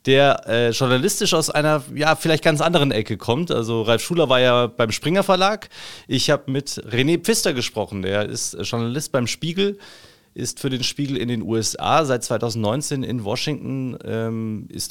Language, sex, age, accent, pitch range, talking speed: German, male, 30-49, German, 115-145 Hz, 175 wpm